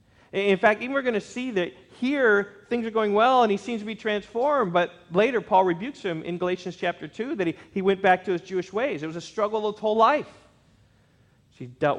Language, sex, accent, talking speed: English, male, American, 240 wpm